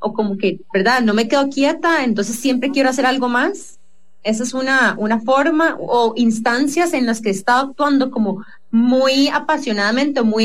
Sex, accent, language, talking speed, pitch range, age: female, Colombian, English, 180 wpm, 195-270 Hz, 20-39